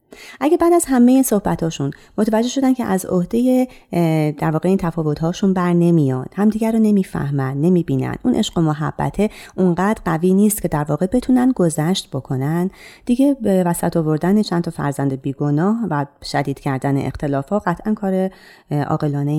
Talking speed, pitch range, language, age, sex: 155 wpm, 145-200 Hz, Persian, 30-49, female